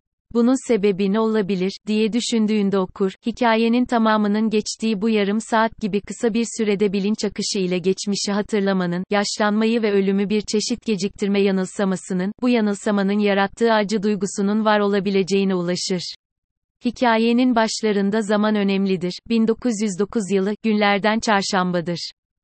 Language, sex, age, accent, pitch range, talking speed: Turkish, female, 30-49, native, 195-220 Hz, 120 wpm